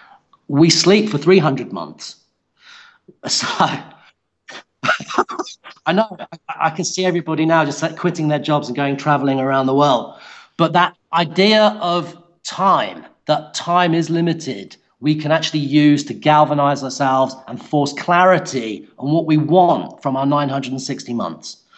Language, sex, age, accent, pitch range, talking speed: English, male, 40-59, British, 140-175 Hz, 140 wpm